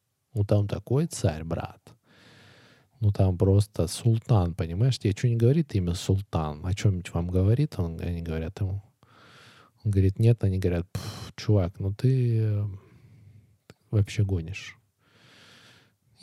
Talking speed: 120 wpm